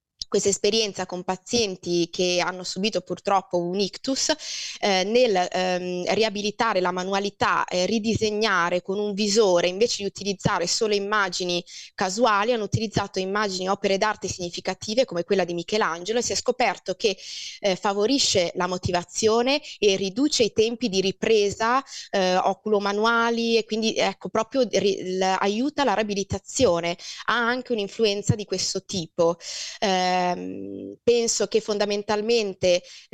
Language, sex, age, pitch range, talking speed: Italian, female, 20-39, 180-220 Hz, 135 wpm